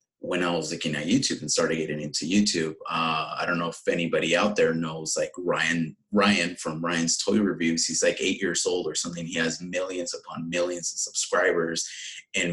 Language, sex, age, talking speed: English, male, 30-49, 200 wpm